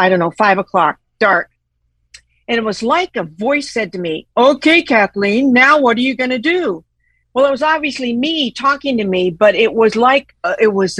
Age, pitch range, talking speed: 50-69, 200-250 Hz, 215 wpm